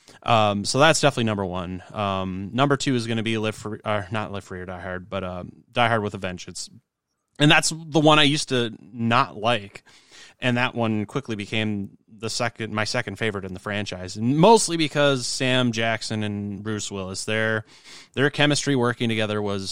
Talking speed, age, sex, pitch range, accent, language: 200 wpm, 20-39, male, 105-135 Hz, American, English